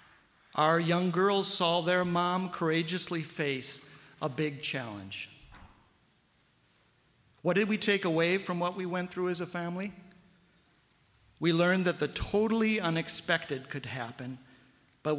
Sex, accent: male, American